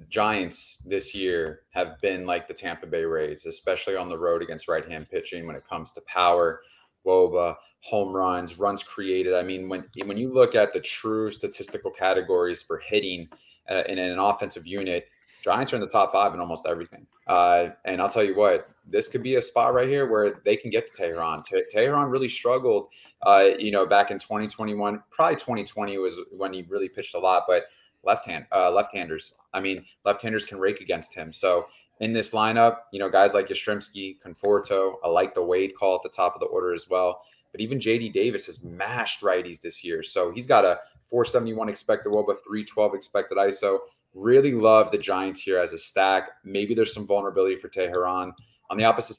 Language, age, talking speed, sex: English, 30-49, 205 wpm, male